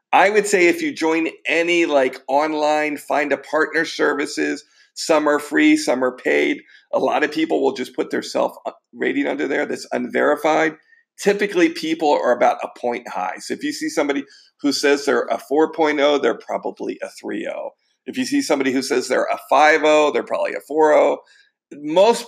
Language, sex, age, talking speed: English, male, 40-59, 180 wpm